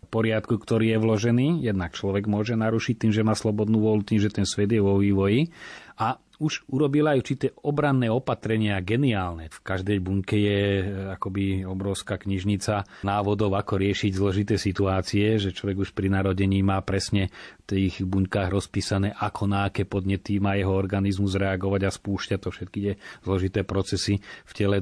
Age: 30-49